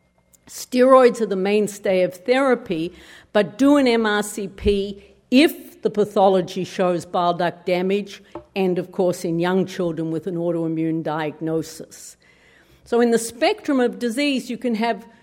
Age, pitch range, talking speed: 50-69, 180-230 Hz, 140 wpm